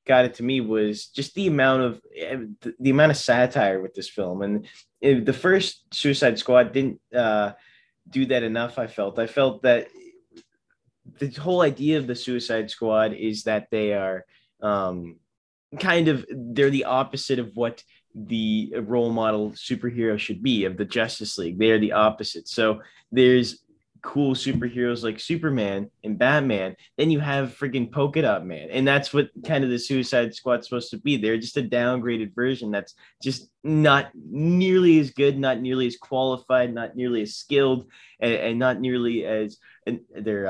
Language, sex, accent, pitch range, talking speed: English, male, American, 105-130 Hz, 170 wpm